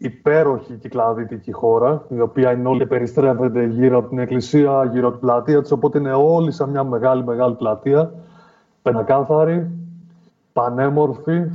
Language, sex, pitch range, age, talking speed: Greek, male, 125-165 Hz, 30-49, 130 wpm